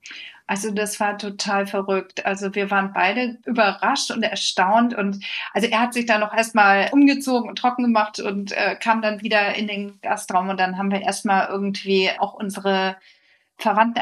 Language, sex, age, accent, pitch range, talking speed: German, female, 40-59, German, 195-235 Hz, 175 wpm